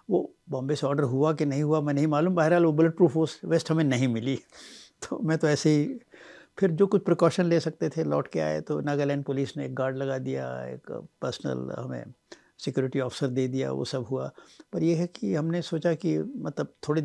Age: 60-79